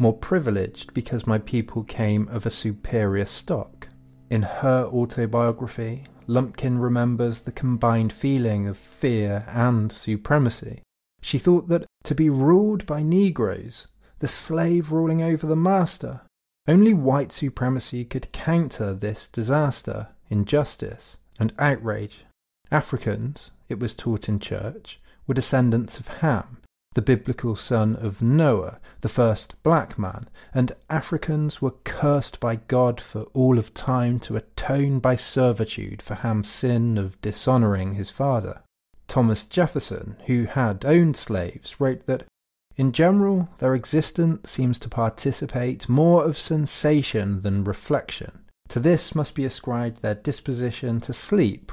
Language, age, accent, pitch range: English, 30-49, British, 110-140 Hz